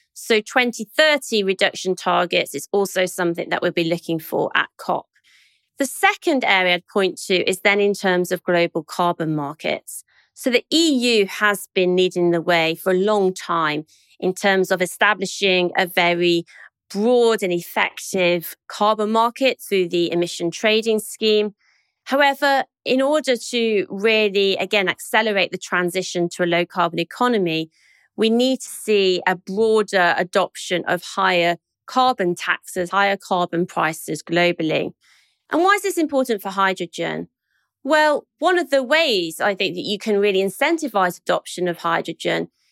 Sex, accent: female, British